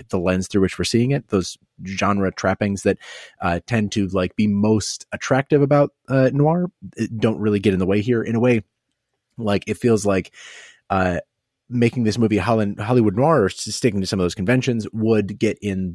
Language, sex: English, male